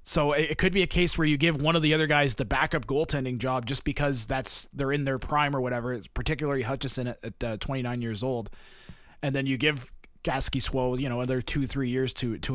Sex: male